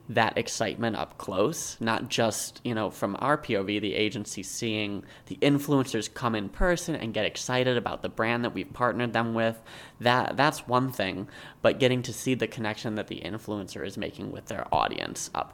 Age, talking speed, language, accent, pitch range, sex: 20-39, 190 wpm, English, American, 105-125 Hz, male